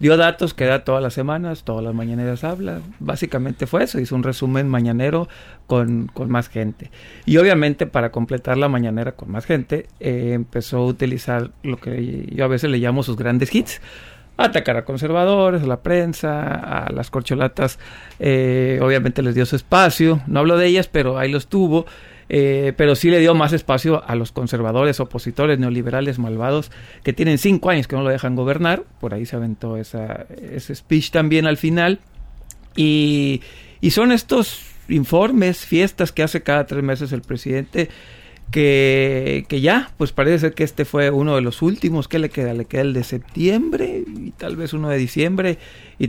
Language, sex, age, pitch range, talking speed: Spanish, male, 50-69, 125-160 Hz, 185 wpm